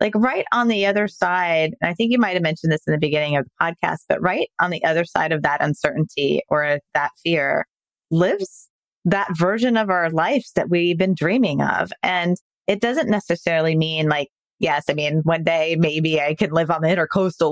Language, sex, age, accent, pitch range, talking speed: English, female, 20-39, American, 150-180 Hz, 200 wpm